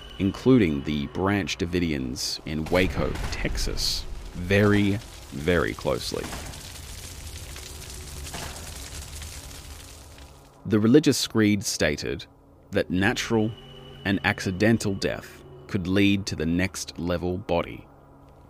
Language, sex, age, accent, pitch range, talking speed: English, male, 30-49, Australian, 75-130 Hz, 80 wpm